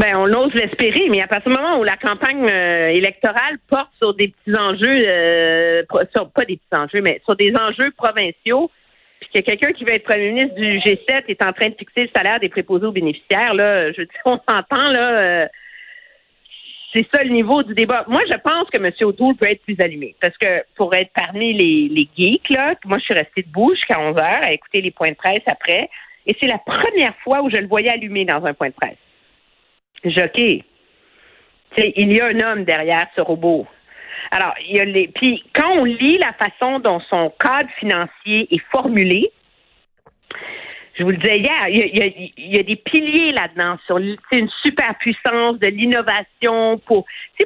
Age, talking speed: 50-69, 210 wpm